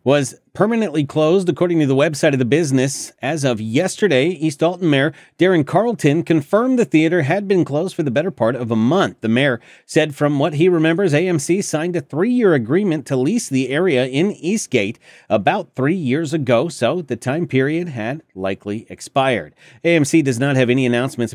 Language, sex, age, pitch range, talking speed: English, male, 40-59, 115-155 Hz, 185 wpm